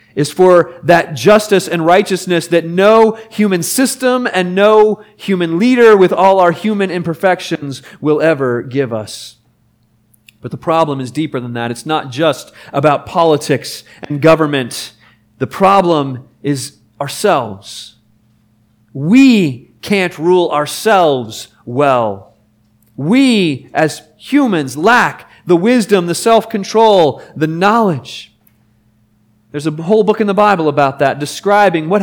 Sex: male